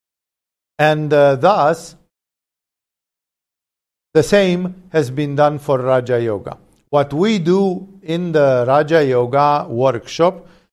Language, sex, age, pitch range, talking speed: English, male, 50-69, 155-185 Hz, 105 wpm